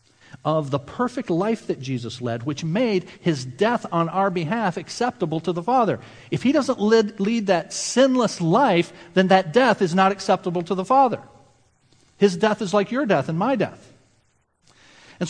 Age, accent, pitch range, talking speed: 50-69, American, 125-195 Hz, 175 wpm